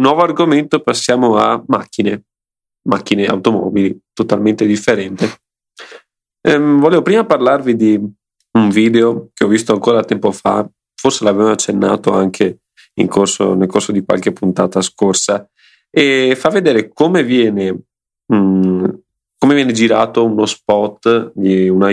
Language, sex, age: Italian, male, 30-49